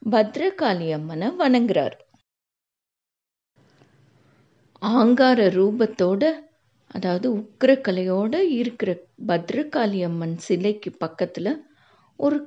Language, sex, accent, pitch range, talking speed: Tamil, female, native, 180-265 Hz, 55 wpm